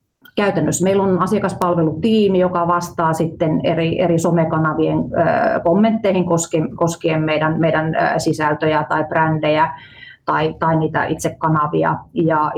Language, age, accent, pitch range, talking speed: Finnish, 30-49, native, 155-180 Hz, 100 wpm